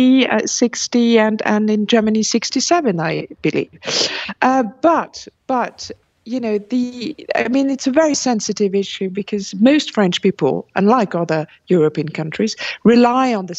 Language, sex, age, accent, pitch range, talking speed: English, female, 50-69, British, 190-245 Hz, 140 wpm